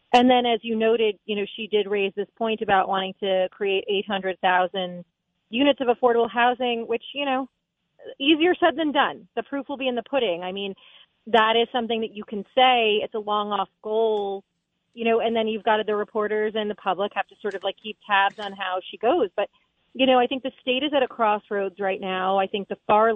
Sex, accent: female, American